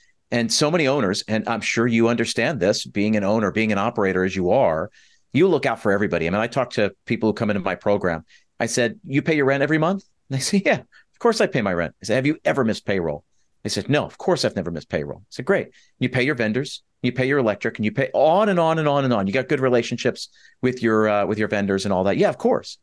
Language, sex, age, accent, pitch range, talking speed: English, male, 40-59, American, 100-130 Hz, 280 wpm